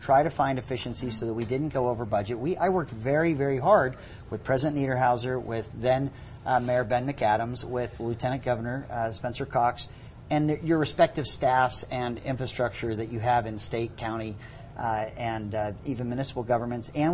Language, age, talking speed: English, 40-59, 180 wpm